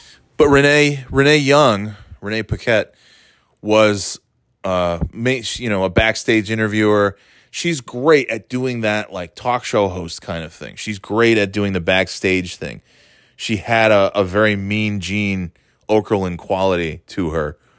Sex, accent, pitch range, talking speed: male, American, 85-110 Hz, 150 wpm